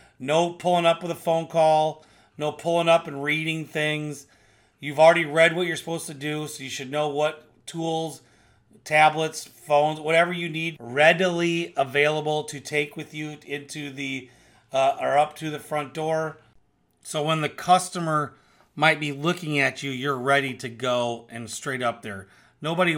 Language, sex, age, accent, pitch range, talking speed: English, male, 40-59, American, 135-170 Hz, 170 wpm